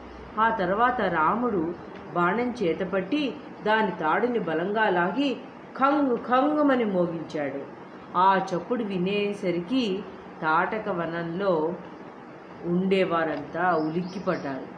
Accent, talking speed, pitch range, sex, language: native, 80 wpm, 175-230 Hz, female, Telugu